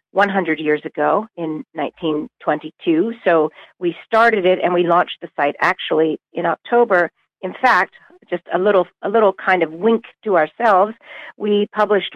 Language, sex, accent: English, female, American